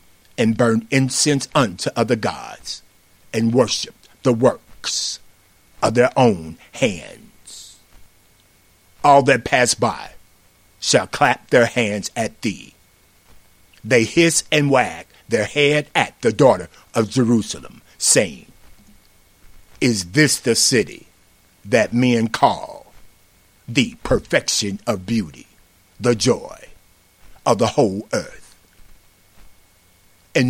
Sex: male